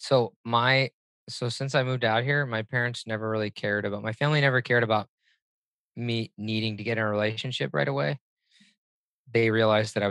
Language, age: English, 20-39